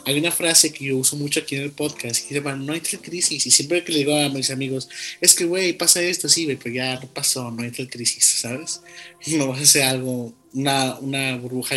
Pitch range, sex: 135-165 Hz, male